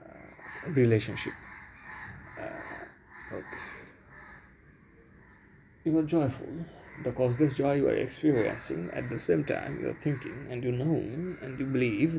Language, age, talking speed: English, 30-49, 125 wpm